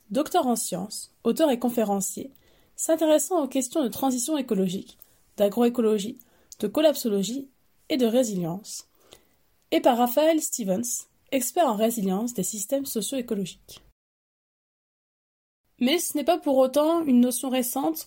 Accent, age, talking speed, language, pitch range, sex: French, 20-39, 125 wpm, French, 220-285 Hz, female